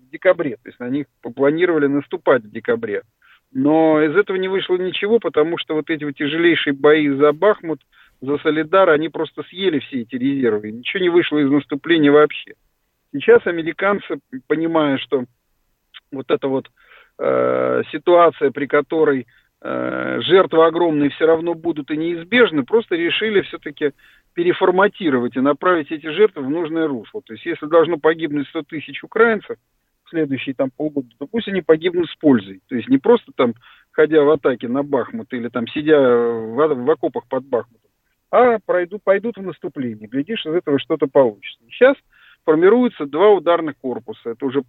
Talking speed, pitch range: 160 wpm, 140-185 Hz